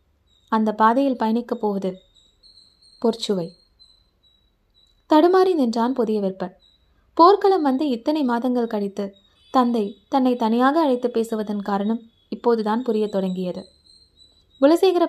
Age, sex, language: 20-39, female, Tamil